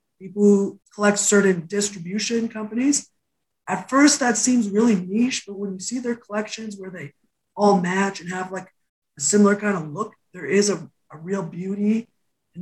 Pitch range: 175-215 Hz